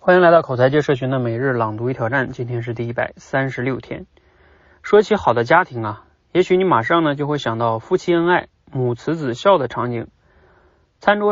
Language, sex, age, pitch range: Chinese, male, 30-49, 120-175 Hz